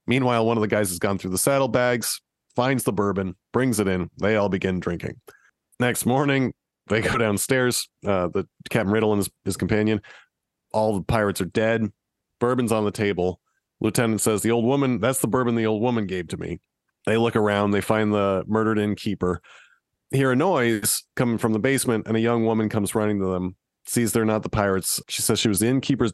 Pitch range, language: 100-120 Hz, English